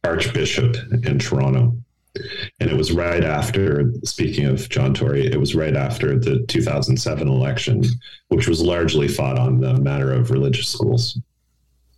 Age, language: 40-59, English